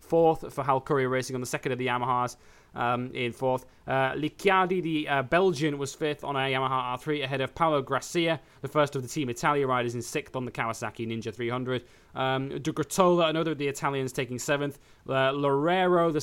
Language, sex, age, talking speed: English, male, 20-39, 200 wpm